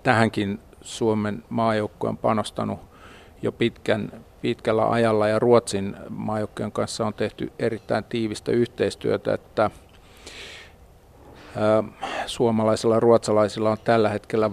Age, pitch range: 50-69, 100-115 Hz